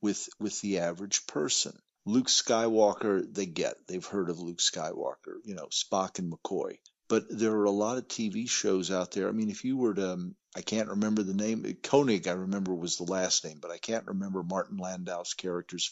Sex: male